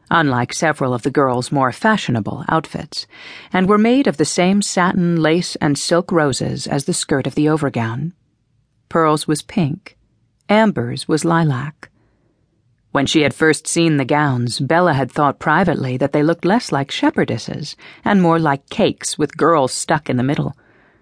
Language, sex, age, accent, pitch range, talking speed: English, female, 40-59, American, 135-170 Hz, 165 wpm